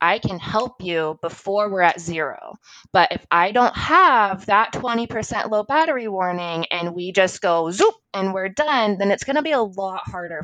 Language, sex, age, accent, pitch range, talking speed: English, female, 20-39, American, 160-195 Hz, 195 wpm